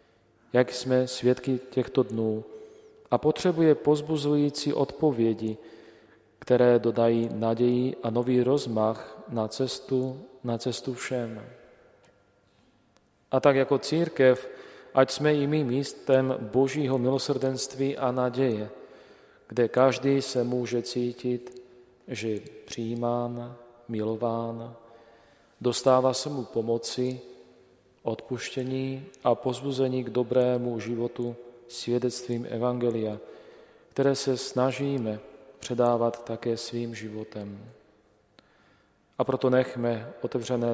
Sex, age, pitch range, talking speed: male, 40-59, 115-130 Hz, 95 wpm